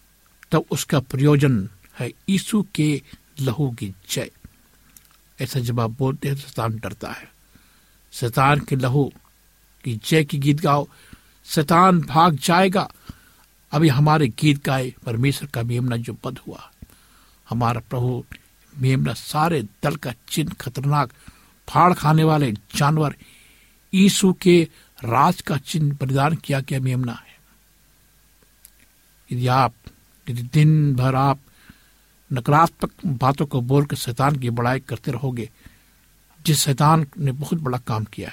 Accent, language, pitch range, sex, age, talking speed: native, Hindi, 125-155 Hz, male, 60-79, 120 wpm